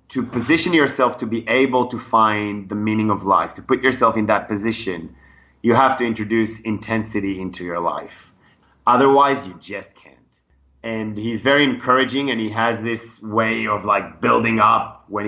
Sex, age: male, 30-49